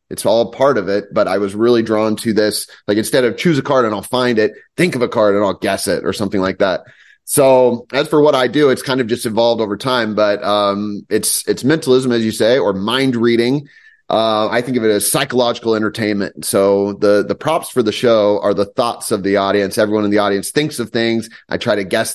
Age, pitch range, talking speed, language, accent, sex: 30-49, 105-130 Hz, 245 wpm, English, American, male